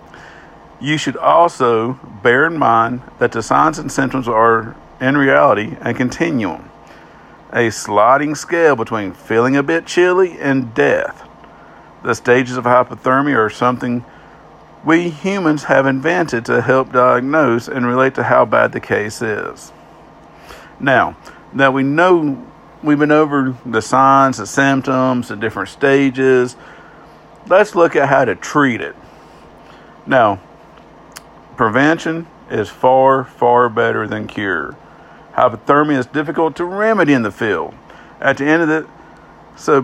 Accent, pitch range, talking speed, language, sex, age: American, 115-150 Hz, 135 wpm, English, male, 50-69